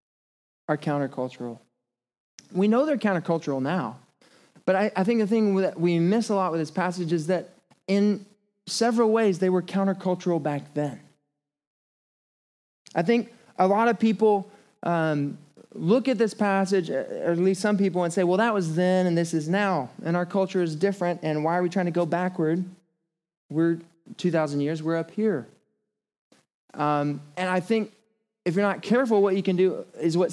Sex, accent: male, American